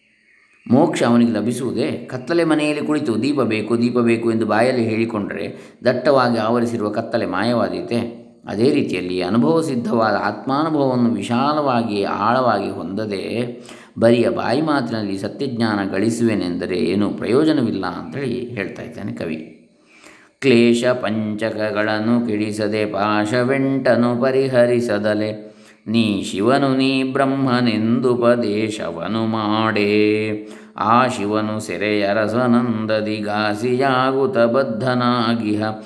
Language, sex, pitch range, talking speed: Kannada, male, 105-125 Hz, 85 wpm